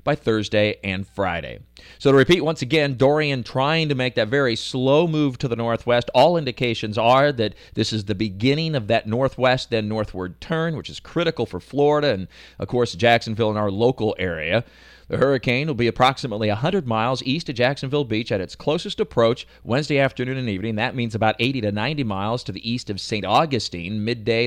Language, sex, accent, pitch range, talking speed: English, male, American, 105-140 Hz, 195 wpm